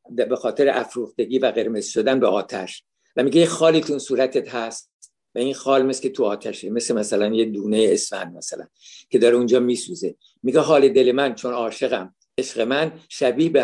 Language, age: Persian, 60-79